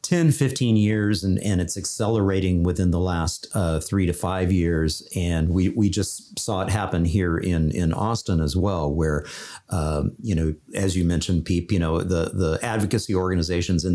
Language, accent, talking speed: English, American, 185 wpm